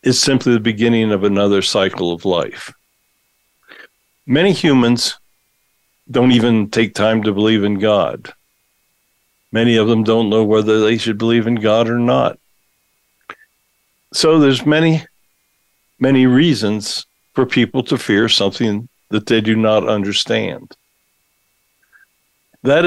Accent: American